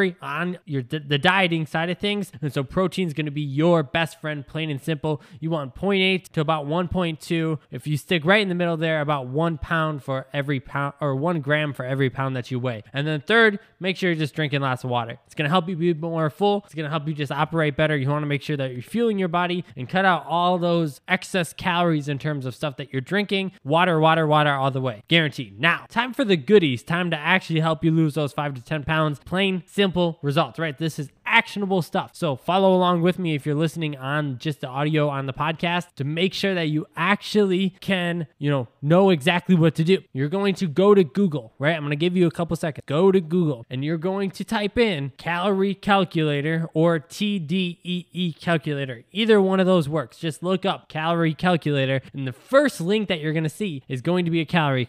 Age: 10-29